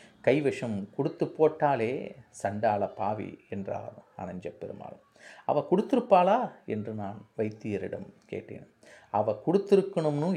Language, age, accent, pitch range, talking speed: Tamil, 30-49, native, 110-170 Hz, 95 wpm